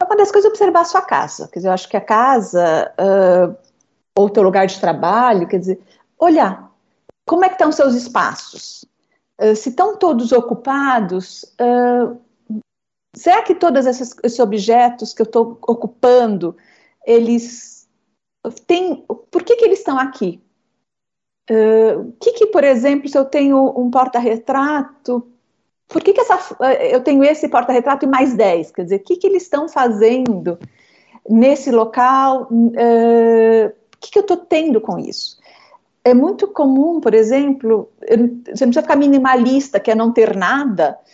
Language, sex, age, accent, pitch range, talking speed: Portuguese, female, 50-69, Brazilian, 230-290 Hz, 165 wpm